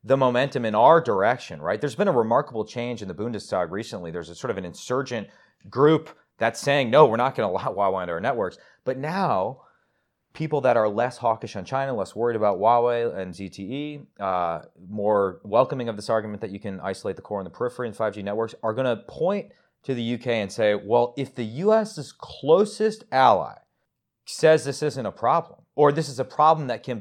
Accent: American